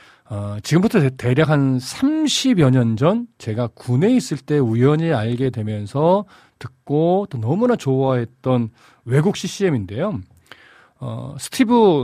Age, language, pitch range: 40-59, Korean, 125-185 Hz